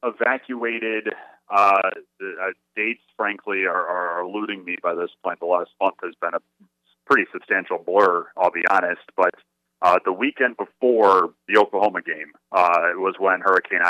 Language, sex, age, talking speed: English, male, 40-59, 150 wpm